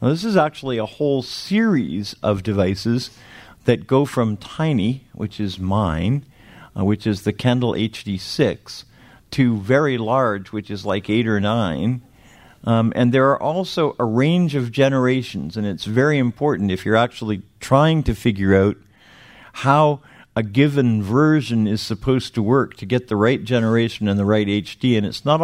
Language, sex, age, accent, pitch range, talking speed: English, male, 50-69, American, 105-125 Hz, 170 wpm